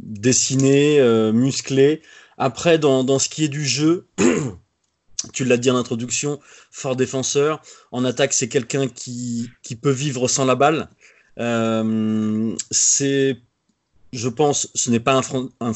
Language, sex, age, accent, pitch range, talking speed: French, male, 20-39, French, 120-145 Hz, 150 wpm